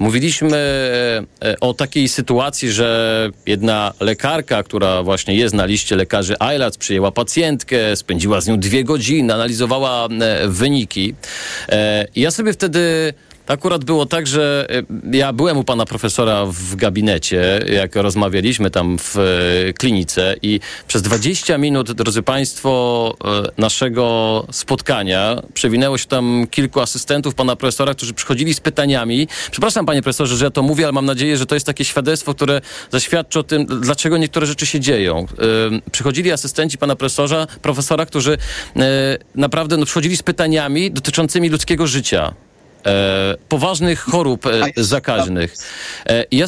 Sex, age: male, 40-59